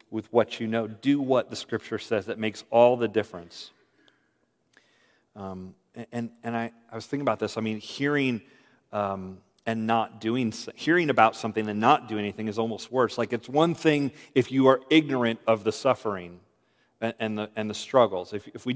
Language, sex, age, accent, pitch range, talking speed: English, male, 40-59, American, 110-135 Hz, 190 wpm